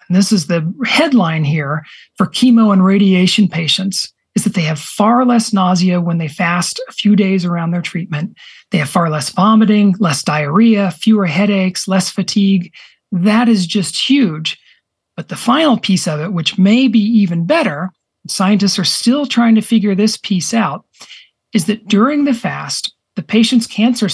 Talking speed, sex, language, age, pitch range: 170 wpm, male, English, 40-59, 175-225 Hz